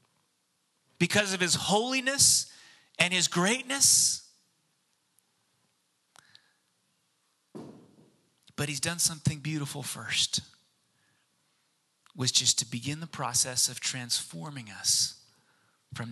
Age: 30-49